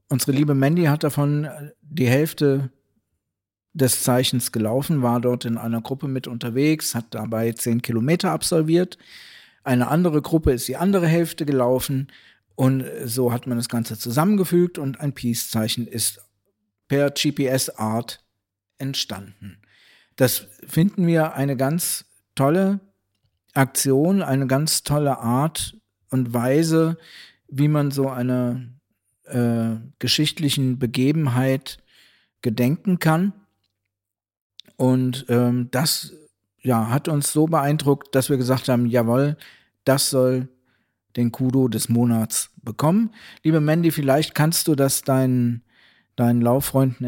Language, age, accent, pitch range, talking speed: German, 50-69, German, 115-145 Hz, 120 wpm